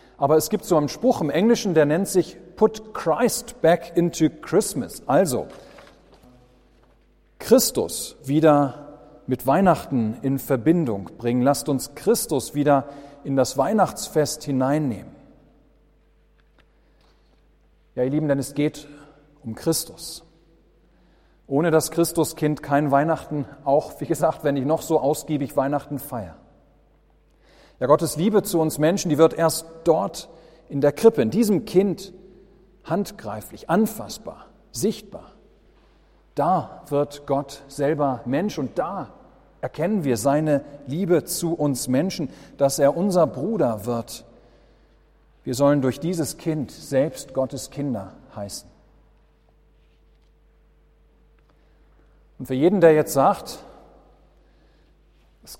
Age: 40-59